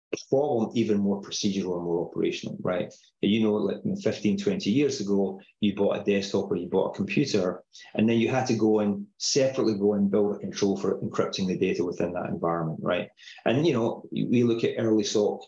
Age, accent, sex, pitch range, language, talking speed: 30-49, British, male, 100-120 Hz, English, 205 wpm